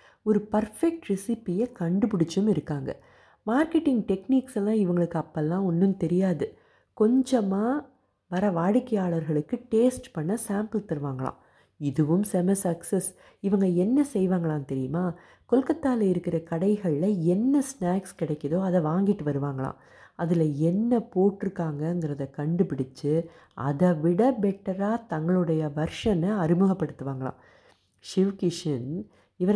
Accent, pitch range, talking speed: native, 160-210 Hz, 95 wpm